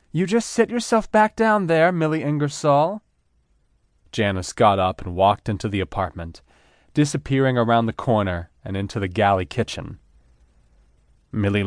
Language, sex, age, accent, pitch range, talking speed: English, male, 30-49, American, 90-120 Hz, 140 wpm